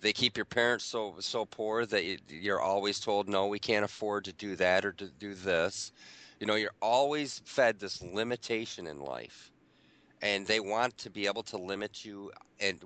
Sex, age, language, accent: male, 40-59, English, American